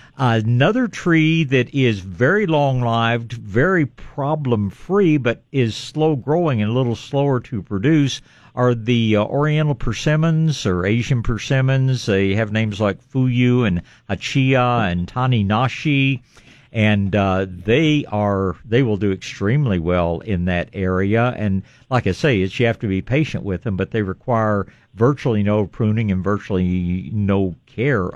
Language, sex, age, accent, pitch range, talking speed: English, male, 60-79, American, 100-130 Hz, 145 wpm